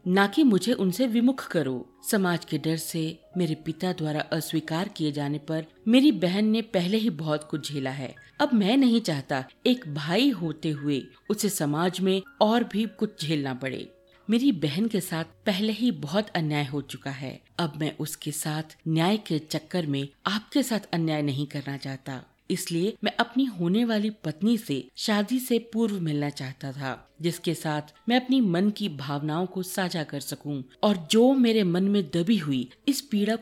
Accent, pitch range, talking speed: native, 150-205 Hz, 180 wpm